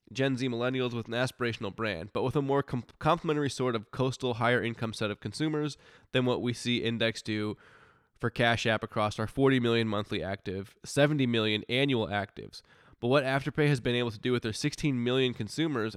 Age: 20-39